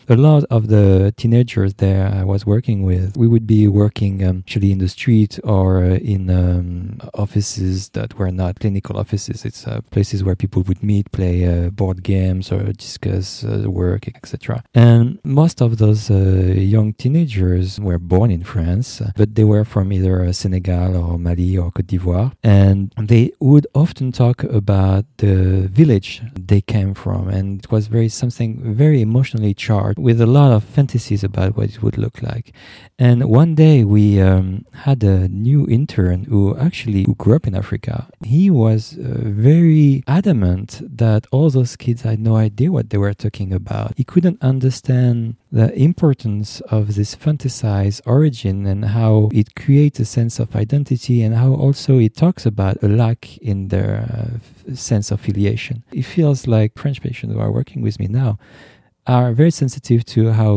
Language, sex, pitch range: English, male, 100-125 Hz